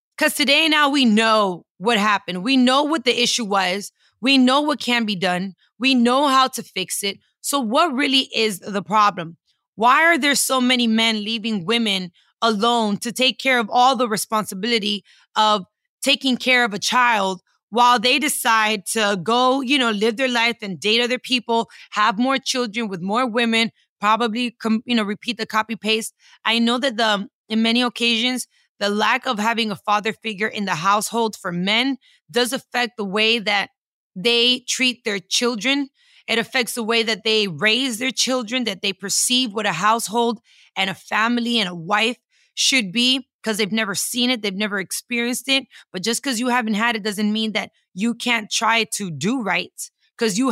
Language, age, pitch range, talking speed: English, 20-39, 210-250 Hz, 190 wpm